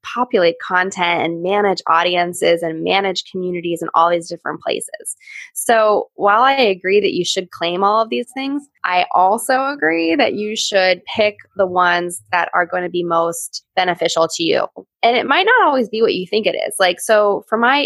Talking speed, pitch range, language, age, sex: 195 wpm, 170-210 Hz, English, 20-39, female